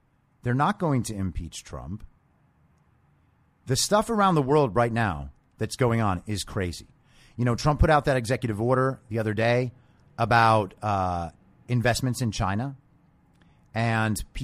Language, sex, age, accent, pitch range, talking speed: English, male, 30-49, American, 110-155 Hz, 145 wpm